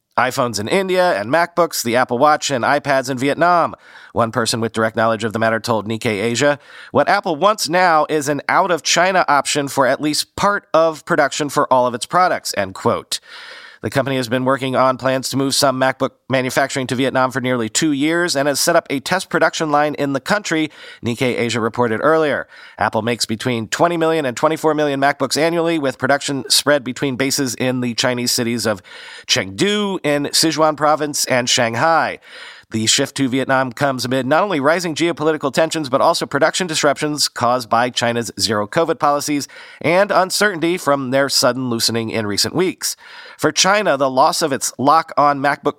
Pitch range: 125-160 Hz